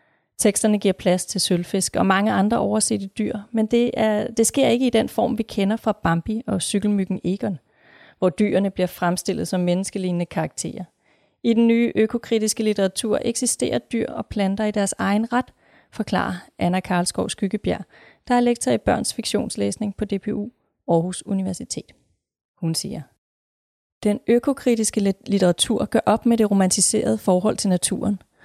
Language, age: Danish, 30-49